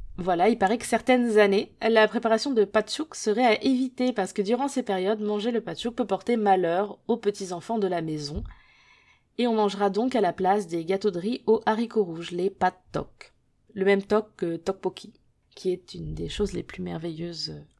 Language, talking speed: French, 200 wpm